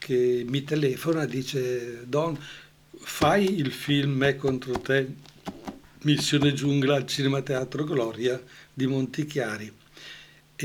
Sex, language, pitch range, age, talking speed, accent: male, Italian, 130-155 Hz, 60-79, 115 wpm, native